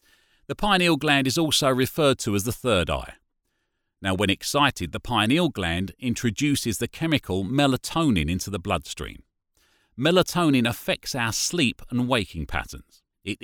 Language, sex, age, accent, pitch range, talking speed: English, male, 40-59, British, 95-140 Hz, 145 wpm